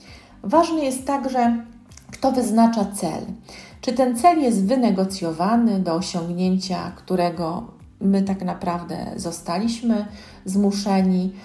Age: 40-59